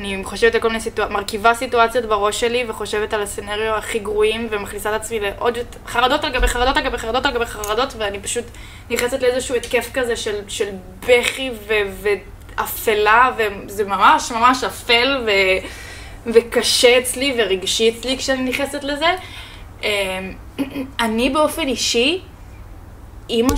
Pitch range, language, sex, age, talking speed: 205-255 Hz, Hebrew, female, 10-29, 150 wpm